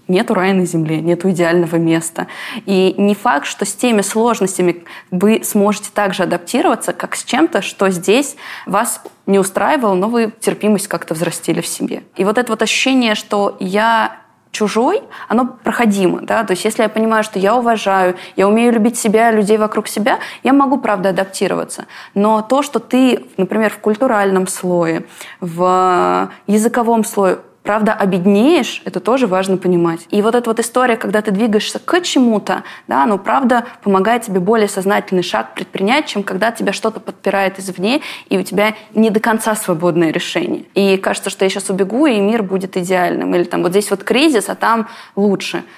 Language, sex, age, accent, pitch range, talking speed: Russian, female, 20-39, native, 185-225 Hz, 170 wpm